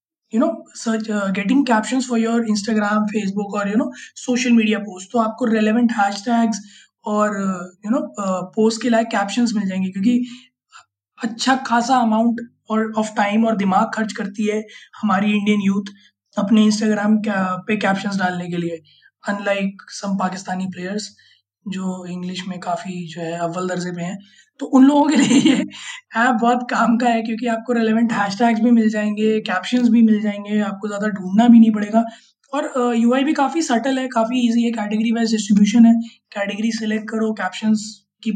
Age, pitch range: 20-39, 200-230 Hz